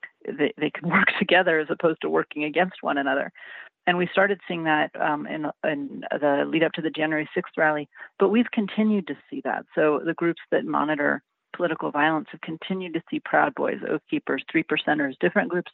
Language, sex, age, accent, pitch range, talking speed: English, female, 40-59, American, 150-185 Hz, 200 wpm